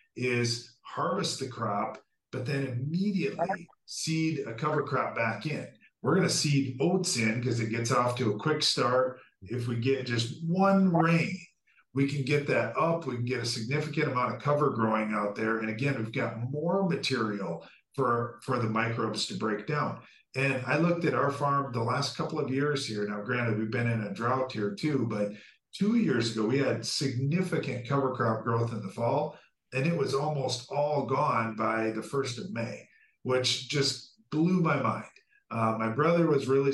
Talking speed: 190 wpm